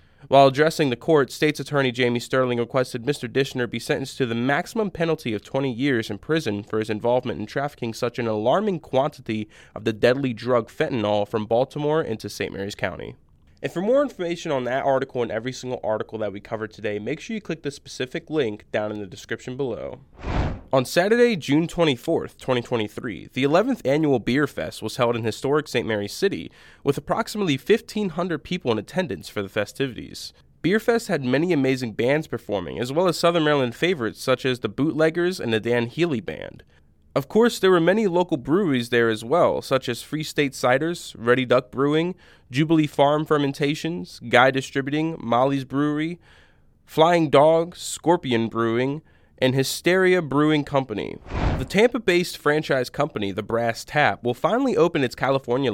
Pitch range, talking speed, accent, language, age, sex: 115-160 Hz, 175 wpm, American, English, 20-39, male